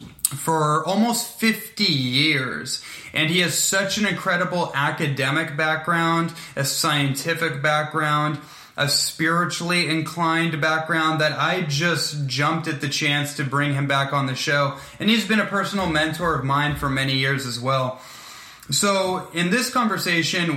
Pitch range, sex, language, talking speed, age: 140-175 Hz, male, English, 145 wpm, 20-39